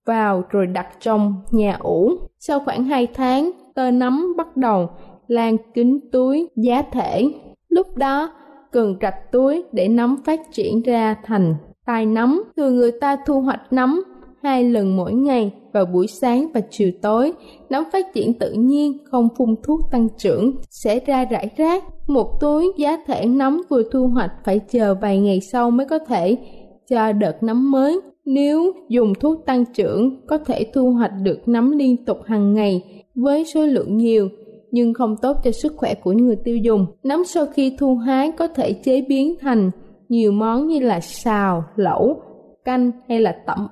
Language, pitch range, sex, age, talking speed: Vietnamese, 215-275 Hz, female, 20-39, 180 wpm